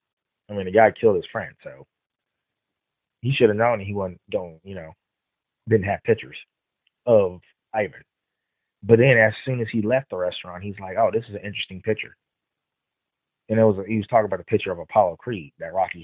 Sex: male